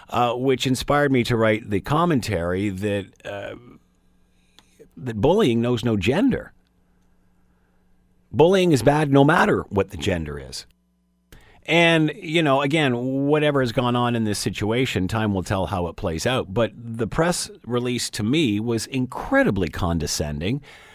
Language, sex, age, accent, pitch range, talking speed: English, male, 50-69, American, 100-140 Hz, 145 wpm